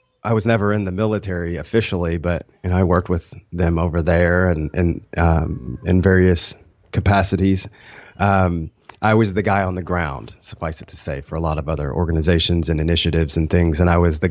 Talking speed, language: 195 wpm, English